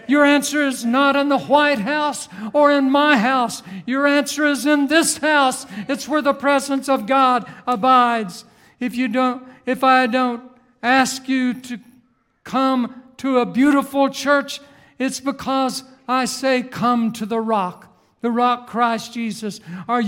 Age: 60-79